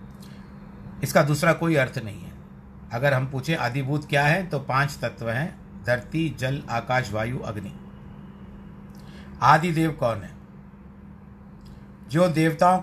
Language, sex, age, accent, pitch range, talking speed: Hindi, male, 50-69, native, 120-160 Hz, 125 wpm